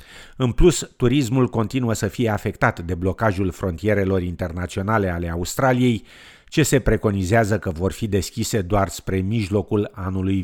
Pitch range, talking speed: 95-120 Hz, 140 wpm